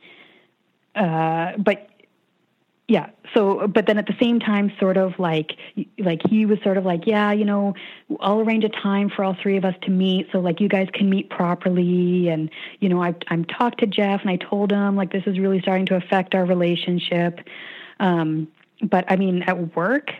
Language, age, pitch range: English, 30-49, 175-205 Hz